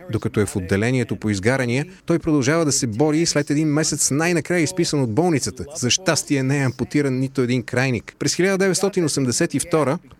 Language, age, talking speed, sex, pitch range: Bulgarian, 30-49, 170 wpm, male, 110-155 Hz